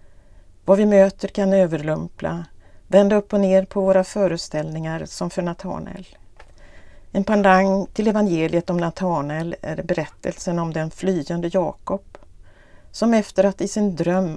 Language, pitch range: Swedish, 140-195 Hz